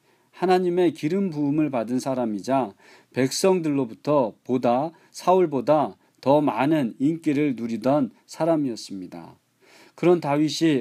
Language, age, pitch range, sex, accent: Korean, 40-59, 125-180 Hz, male, native